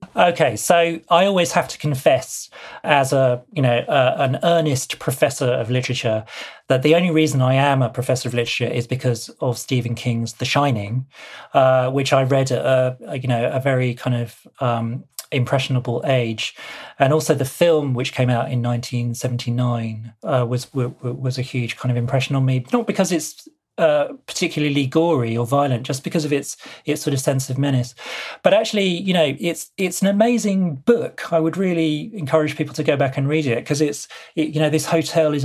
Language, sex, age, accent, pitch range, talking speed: English, male, 40-59, British, 130-170 Hz, 195 wpm